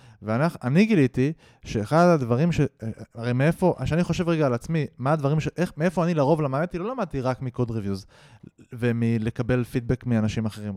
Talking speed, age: 160 wpm, 20-39